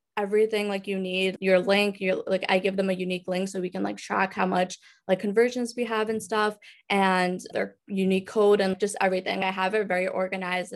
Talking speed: 220 wpm